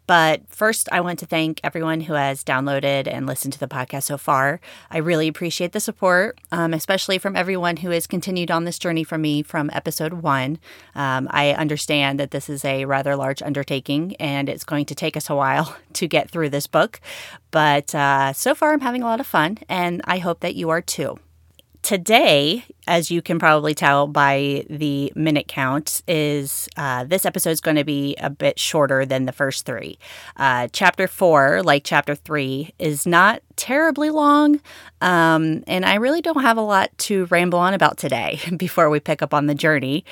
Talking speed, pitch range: 195 wpm, 140-175 Hz